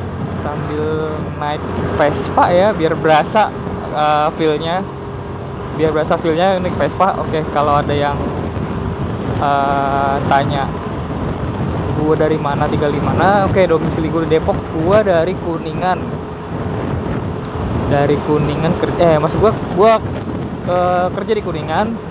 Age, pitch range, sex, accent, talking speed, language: 20-39, 140-165 Hz, male, native, 120 wpm, Indonesian